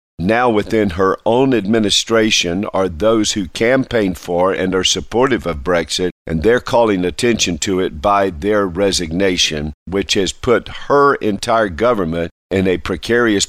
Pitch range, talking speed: 85-105 Hz, 145 wpm